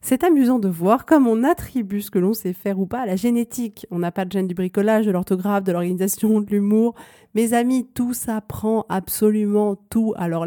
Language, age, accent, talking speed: French, 30-49, French, 220 wpm